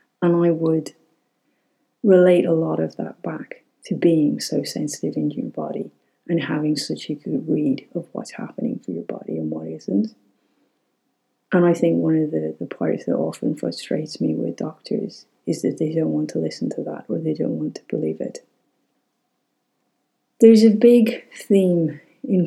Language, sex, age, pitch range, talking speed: English, female, 30-49, 155-205 Hz, 175 wpm